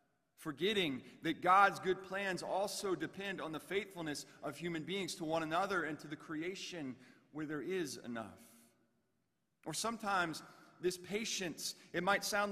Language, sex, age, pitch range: English, male, 30-49, 160-205 Hz